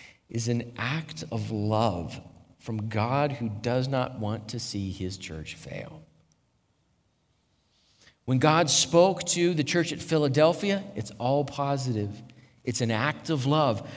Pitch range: 130-185 Hz